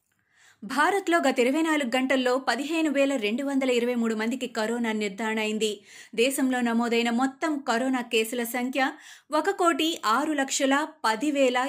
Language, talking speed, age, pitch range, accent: Telugu, 135 wpm, 20-39, 235-290 Hz, native